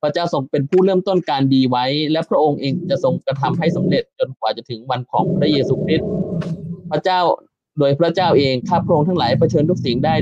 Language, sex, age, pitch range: Thai, male, 20-39, 135-175 Hz